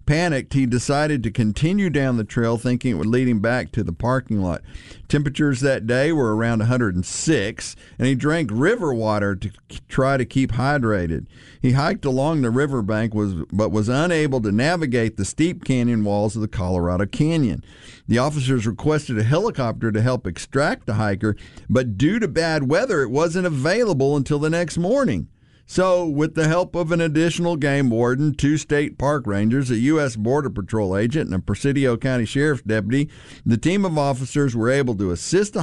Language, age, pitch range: English, 50-69, 110-150 Hz